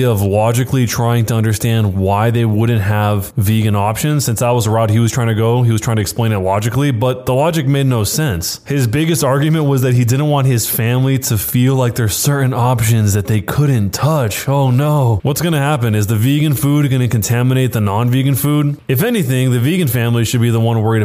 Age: 20-39